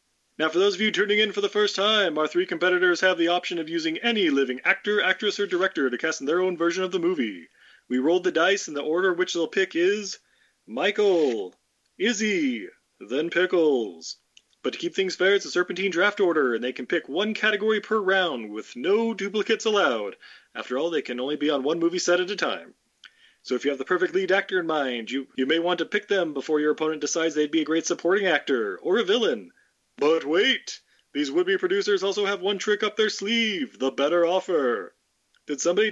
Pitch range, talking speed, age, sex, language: 170-230 Hz, 220 wpm, 30-49, male, English